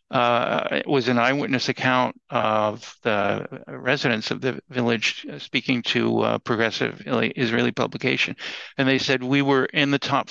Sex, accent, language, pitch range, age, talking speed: male, American, English, 115-135 Hz, 60-79, 150 wpm